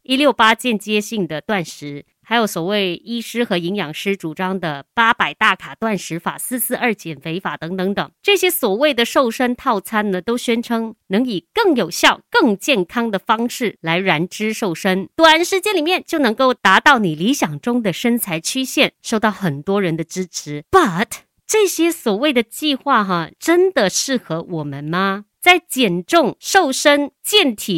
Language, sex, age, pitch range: Chinese, female, 50-69, 180-265 Hz